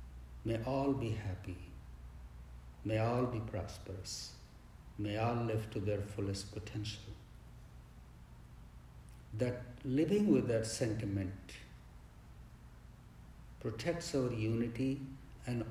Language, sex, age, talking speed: English, male, 60-79, 90 wpm